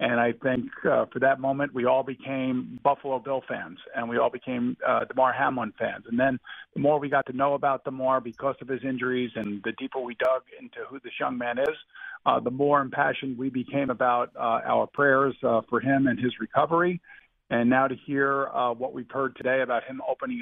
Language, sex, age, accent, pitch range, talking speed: English, male, 50-69, American, 120-140 Hz, 215 wpm